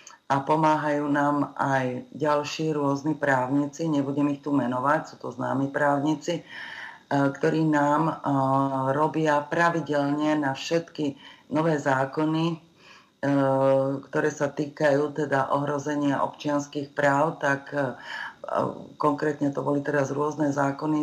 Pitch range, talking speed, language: 140-155 Hz, 105 wpm, Slovak